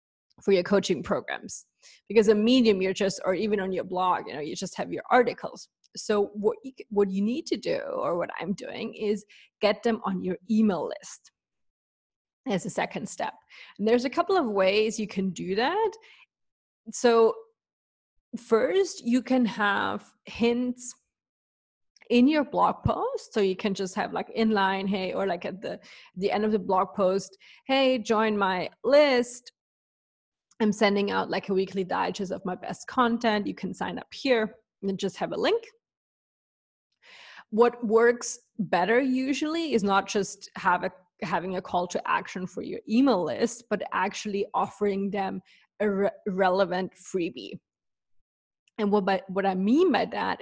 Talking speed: 170 wpm